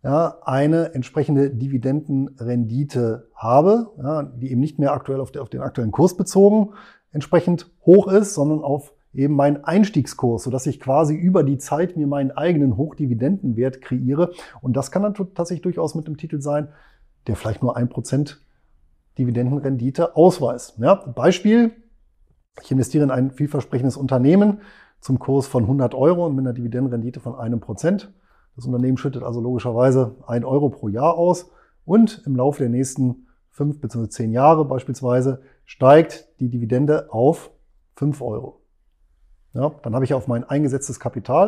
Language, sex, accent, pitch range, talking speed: German, male, German, 125-150 Hz, 155 wpm